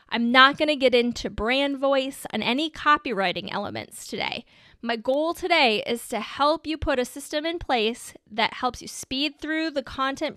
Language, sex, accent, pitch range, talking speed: English, female, American, 230-295 Hz, 185 wpm